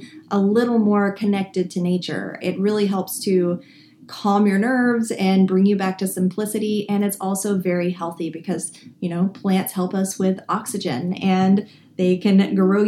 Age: 30-49